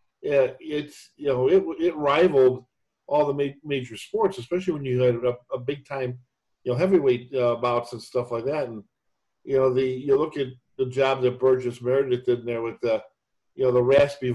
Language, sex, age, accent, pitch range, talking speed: English, male, 50-69, American, 125-140 Hz, 210 wpm